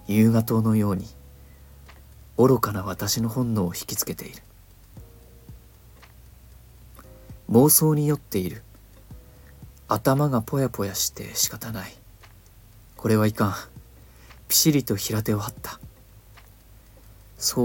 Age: 40-59